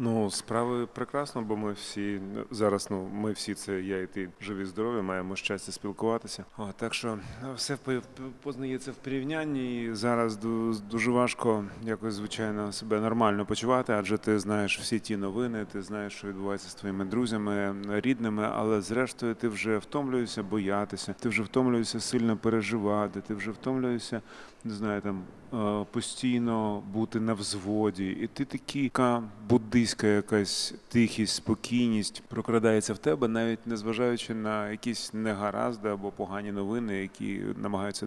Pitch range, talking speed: 105-120 Hz, 145 wpm